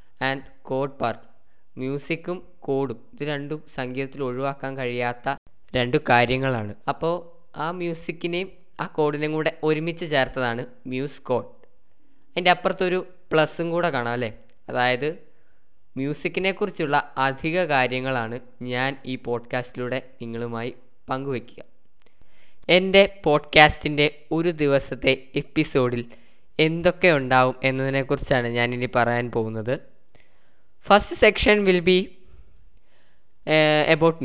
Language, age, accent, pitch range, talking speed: Malayalam, 10-29, native, 125-170 Hz, 95 wpm